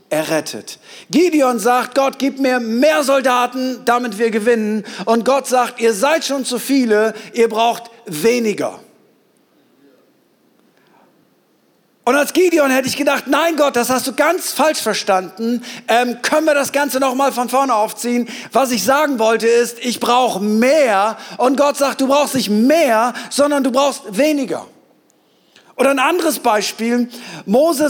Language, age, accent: German, 50-69, German